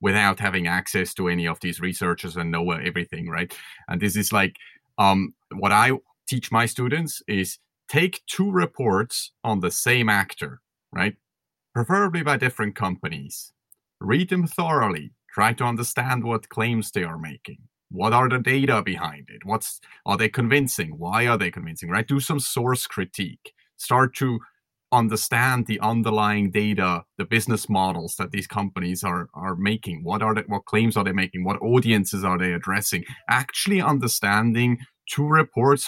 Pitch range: 95-140 Hz